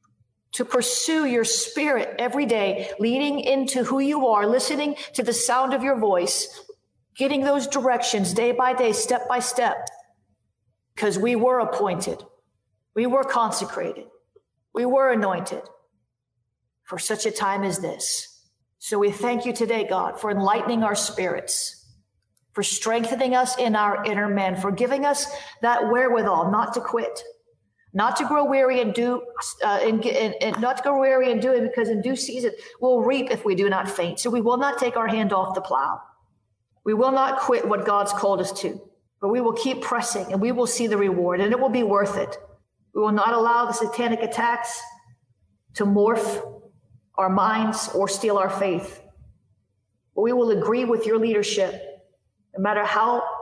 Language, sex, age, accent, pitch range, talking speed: English, female, 40-59, American, 195-250 Hz, 175 wpm